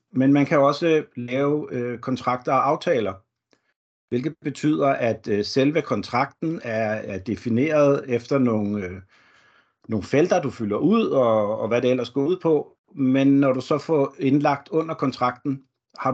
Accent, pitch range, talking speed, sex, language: native, 115-140 Hz, 160 wpm, male, Danish